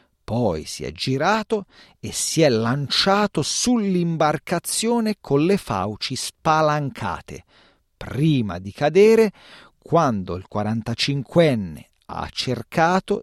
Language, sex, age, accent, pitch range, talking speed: Italian, male, 40-59, native, 105-165 Hz, 95 wpm